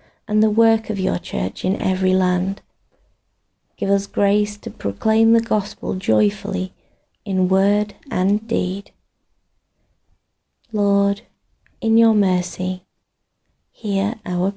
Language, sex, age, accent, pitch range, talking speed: English, female, 30-49, British, 175-210 Hz, 110 wpm